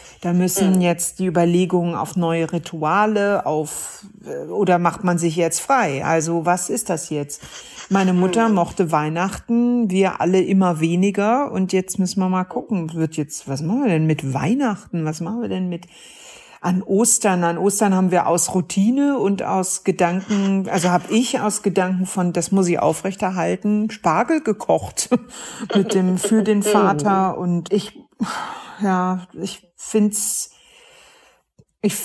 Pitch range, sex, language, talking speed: 175-215 Hz, female, English, 150 wpm